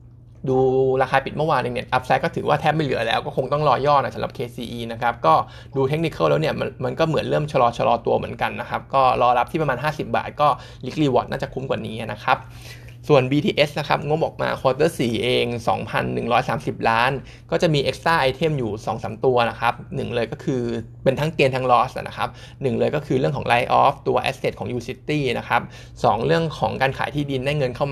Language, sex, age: Thai, male, 20-39